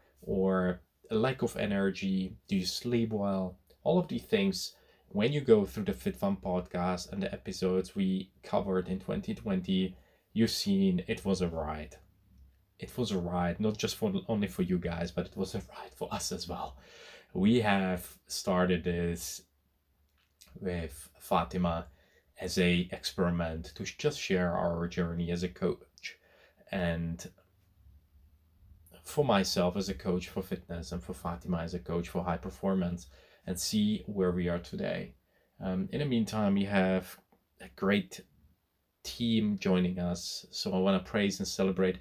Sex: male